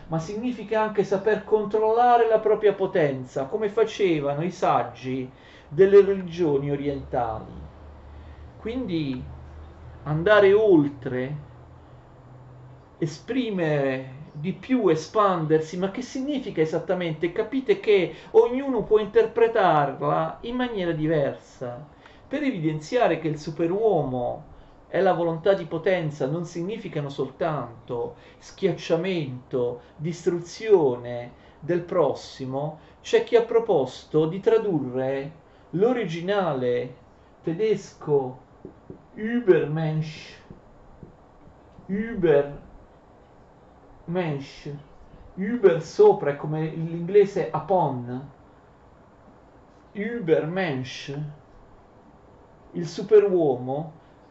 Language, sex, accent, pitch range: Italian, male, native, 135-210 Hz